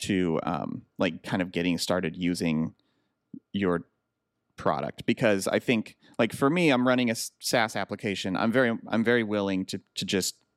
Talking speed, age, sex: 165 wpm, 30-49, male